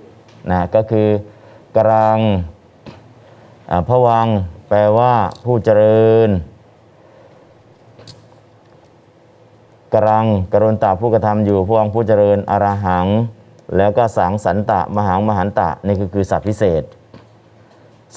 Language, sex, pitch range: Thai, male, 100-115 Hz